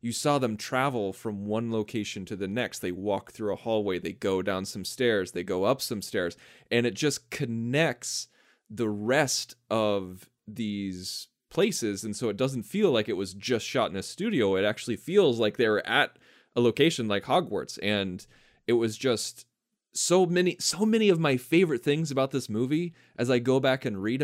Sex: male